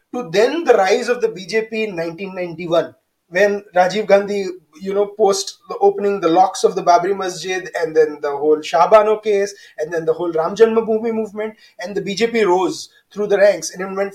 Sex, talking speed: male, 195 wpm